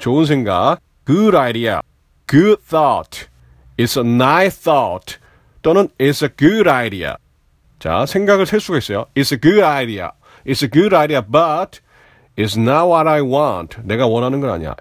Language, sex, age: Korean, male, 40-59